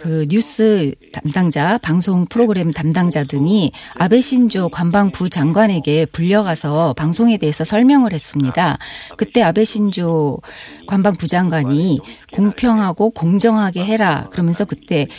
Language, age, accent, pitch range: Korean, 40-59, native, 155-215 Hz